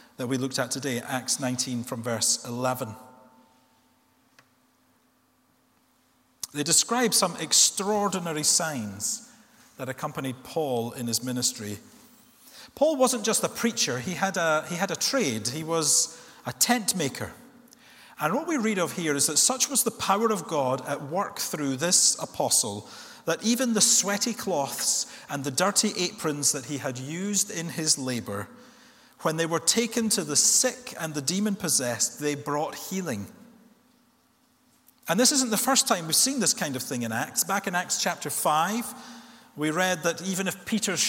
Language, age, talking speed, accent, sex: English, 40-59, 160 wpm, British, male